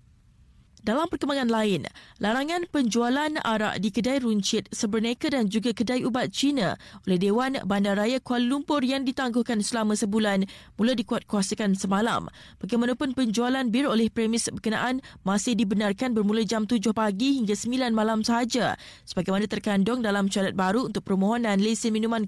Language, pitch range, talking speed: Malay, 210-255 Hz, 140 wpm